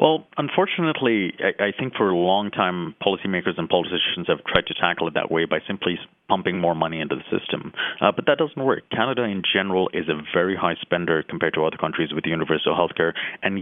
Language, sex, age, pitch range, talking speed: English, male, 30-49, 85-95 Hz, 210 wpm